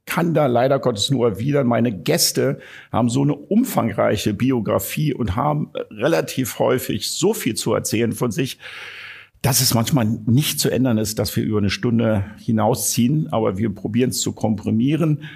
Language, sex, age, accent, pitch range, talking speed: German, male, 50-69, German, 110-145 Hz, 170 wpm